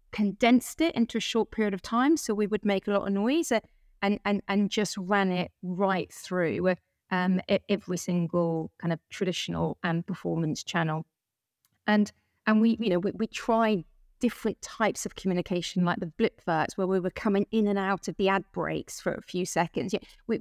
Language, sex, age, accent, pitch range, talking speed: English, female, 30-49, British, 180-220 Hz, 190 wpm